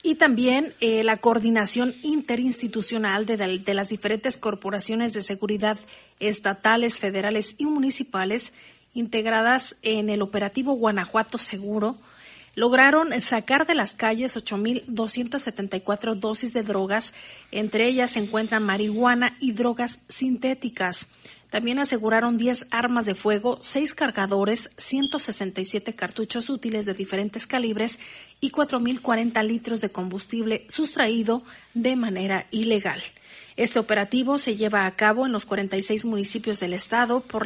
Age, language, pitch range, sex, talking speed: 40-59, Spanish, 210-245 Hz, female, 125 wpm